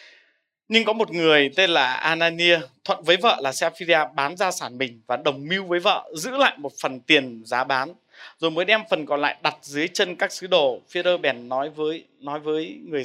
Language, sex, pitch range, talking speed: Vietnamese, male, 140-190 Hz, 215 wpm